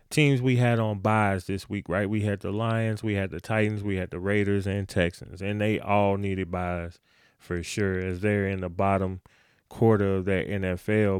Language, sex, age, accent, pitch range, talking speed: English, male, 20-39, American, 100-125 Hz, 205 wpm